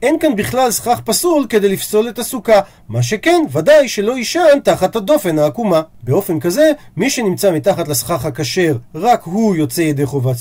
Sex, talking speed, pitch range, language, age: male, 165 wpm, 155-240 Hz, Hebrew, 40-59